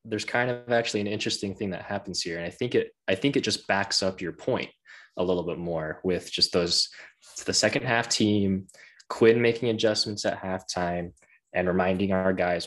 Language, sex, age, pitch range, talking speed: English, male, 20-39, 95-120 Hz, 205 wpm